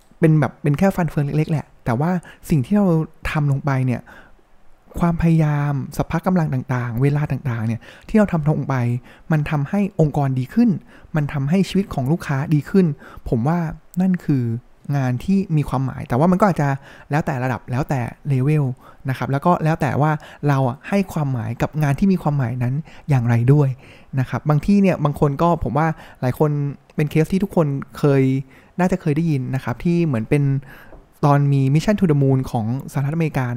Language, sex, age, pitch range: Thai, male, 20-39, 130-165 Hz